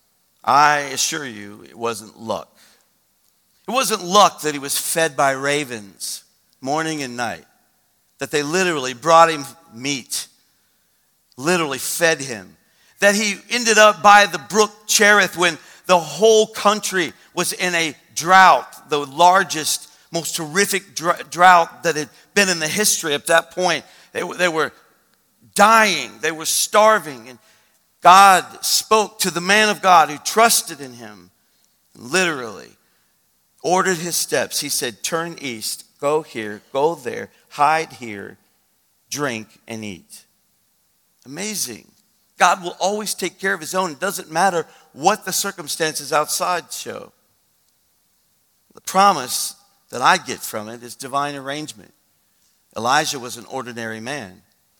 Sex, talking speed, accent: male, 140 wpm, American